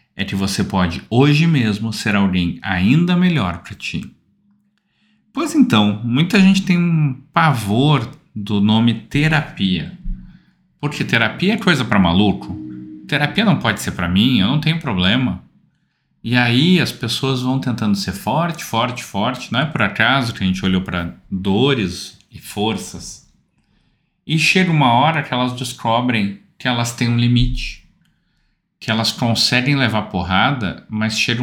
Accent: Brazilian